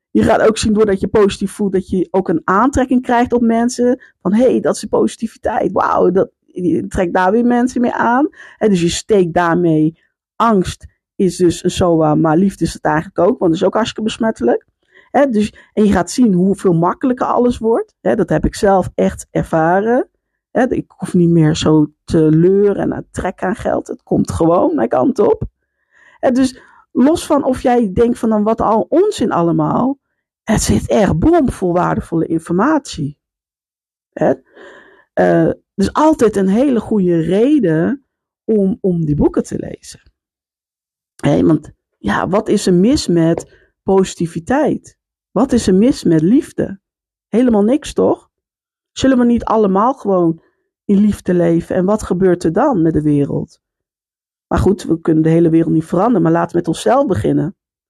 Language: Dutch